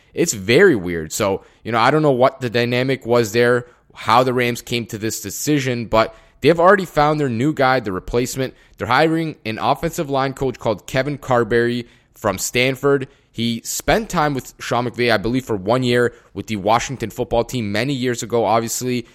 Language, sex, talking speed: English, male, 195 wpm